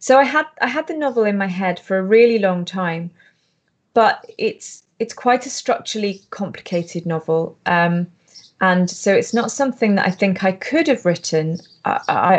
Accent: British